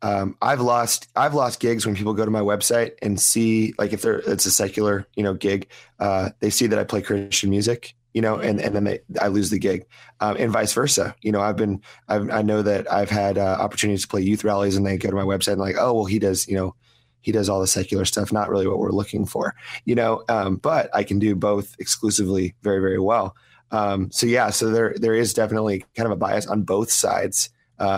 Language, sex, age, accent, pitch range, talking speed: English, male, 30-49, American, 100-110 Hz, 245 wpm